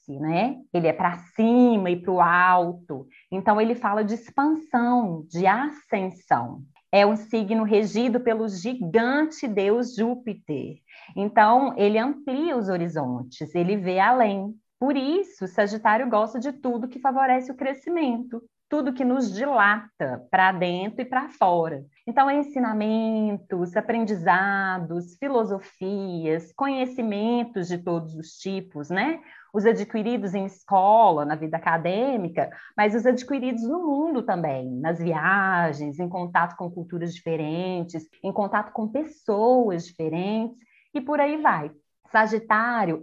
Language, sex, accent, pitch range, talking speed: Portuguese, female, Brazilian, 180-250 Hz, 130 wpm